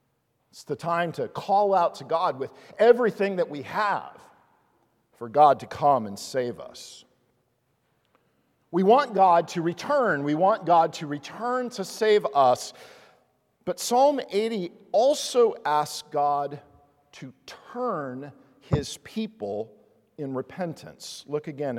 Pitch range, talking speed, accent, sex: 135-225 Hz, 130 wpm, American, male